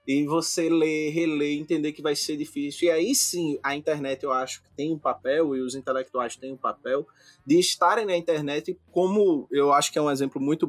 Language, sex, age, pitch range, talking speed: Portuguese, male, 20-39, 145-180 Hz, 215 wpm